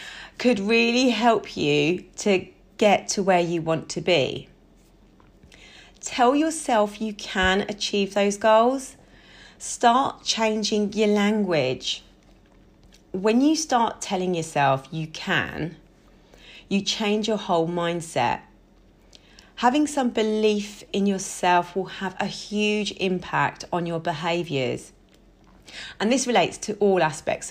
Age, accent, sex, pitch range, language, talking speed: 30-49, British, female, 180-225 Hz, English, 120 wpm